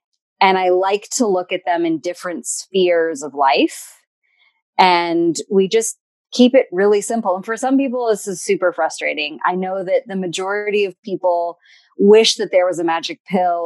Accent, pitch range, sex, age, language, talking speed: American, 160-205 Hz, female, 30-49, English, 180 wpm